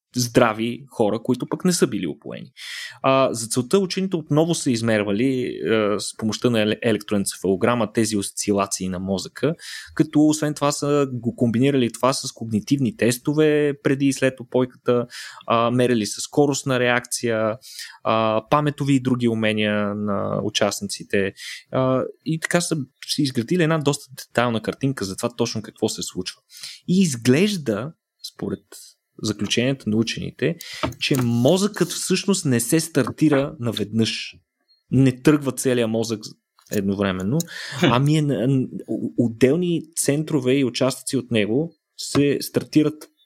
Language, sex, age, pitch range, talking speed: Bulgarian, male, 20-39, 115-150 Hz, 130 wpm